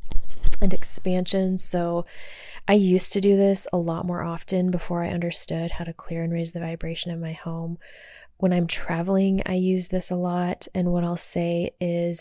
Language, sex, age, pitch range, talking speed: English, female, 20-39, 170-185 Hz, 185 wpm